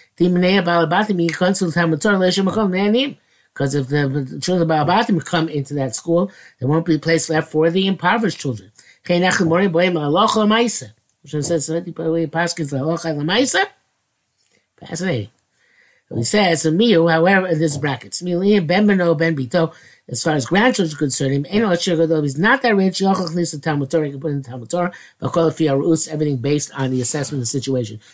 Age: 50-69